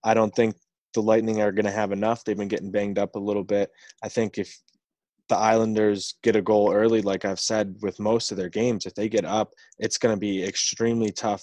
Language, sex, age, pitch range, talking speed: English, male, 20-39, 95-110 Hz, 235 wpm